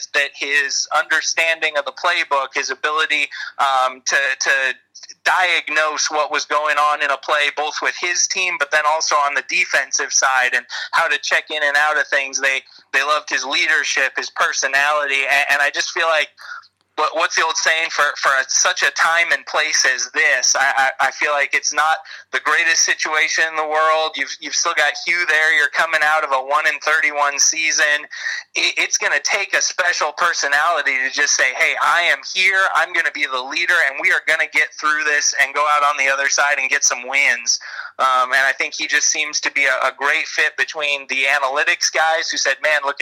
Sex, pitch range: male, 140-155 Hz